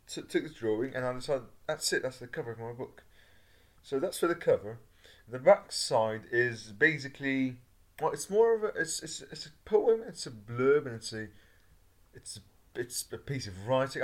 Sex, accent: male, British